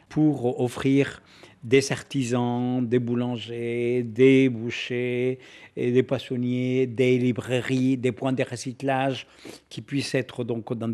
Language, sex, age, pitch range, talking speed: French, male, 50-69, 115-135 Hz, 115 wpm